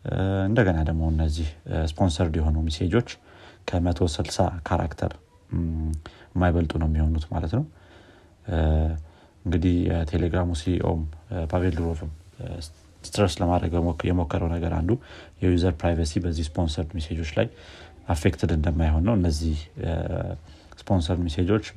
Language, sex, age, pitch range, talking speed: Amharic, male, 30-49, 80-95 Hz, 95 wpm